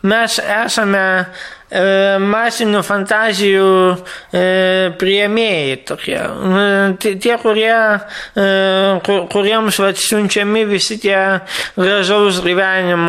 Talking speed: 95 wpm